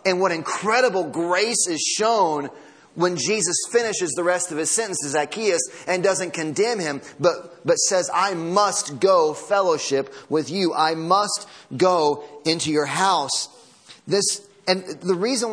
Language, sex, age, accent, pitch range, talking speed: English, male, 30-49, American, 150-190 Hz, 150 wpm